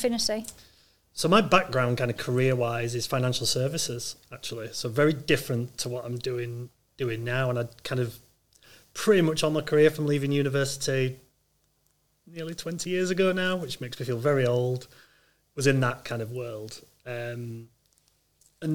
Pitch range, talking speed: 120-150 Hz, 165 wpm